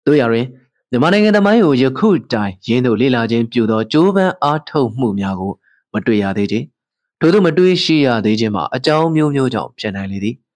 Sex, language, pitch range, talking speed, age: male, English, 110-145 Hz, 65 wpm, 20-39